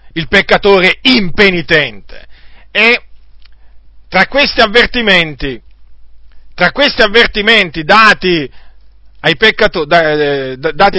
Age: 40-59